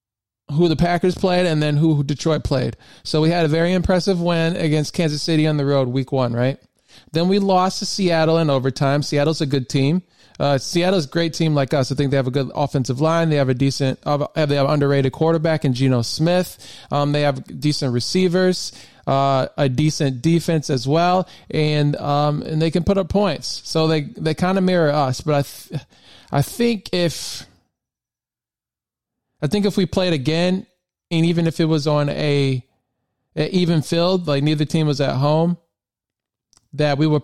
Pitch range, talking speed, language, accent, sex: 135-165 Hz, 195 wpm, English, American, male